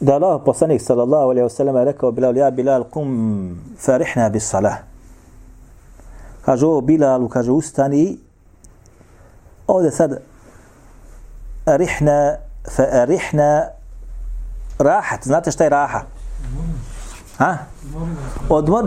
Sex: male